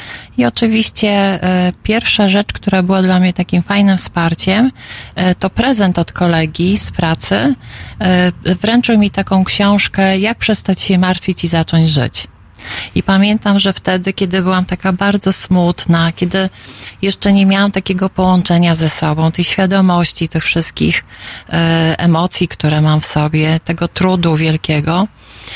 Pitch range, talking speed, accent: 170-205 Hz, 135 wpm, native